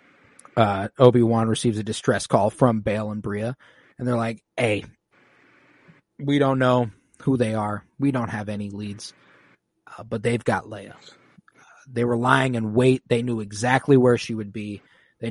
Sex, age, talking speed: male, 30-49, 175 wpm